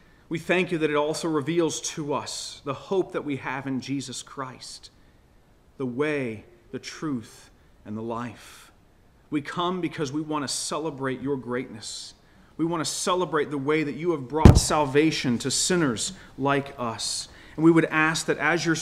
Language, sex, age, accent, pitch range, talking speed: English, male, 40-59, American, 120-155 Hz, 175 wpm